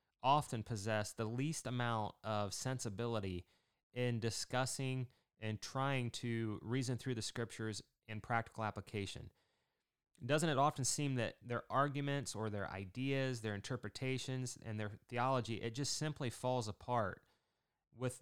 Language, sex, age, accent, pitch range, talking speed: English, male, 30-49, American, 105-130 Hz, 130 wpm